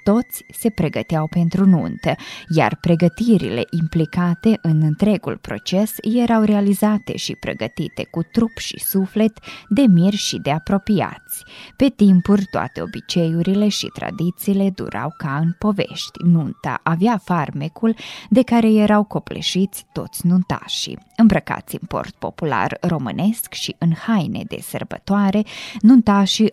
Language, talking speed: Romanian, 120 wpm